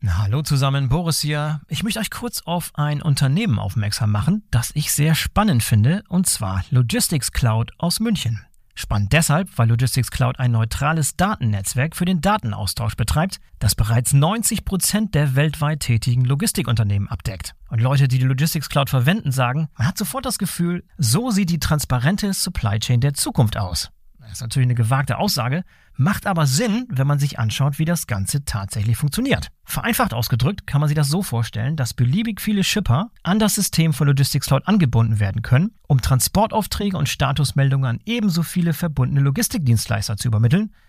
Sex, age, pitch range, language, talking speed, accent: male, 40-59, 120-175 Hz, German, 170 wpm, German